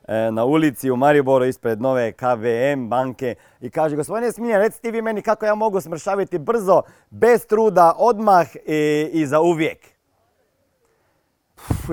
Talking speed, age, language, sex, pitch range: 145 wpm, 40-59, Croatian, male, 145-220 Hz